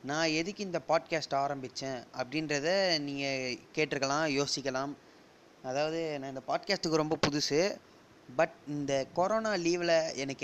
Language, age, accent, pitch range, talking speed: Tamil, 20-39, native, 140-170 Hz, 115 wpm